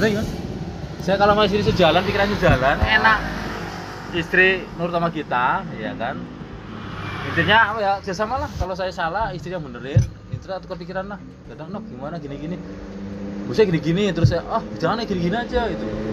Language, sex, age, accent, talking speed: Indonesian, male, 20-39, native, 155 wpm